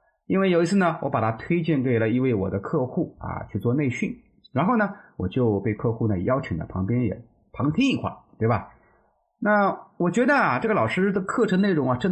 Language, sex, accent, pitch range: Chinese, male, native, 115-170 Hz